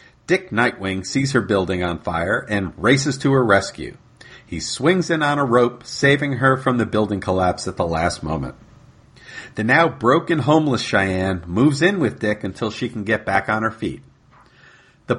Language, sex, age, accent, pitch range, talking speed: English, male, 50-69, American, 100-140 Hz, 180 wpm